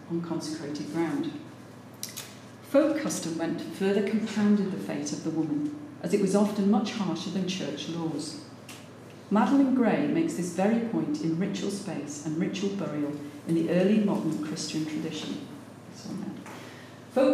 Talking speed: 140 wpm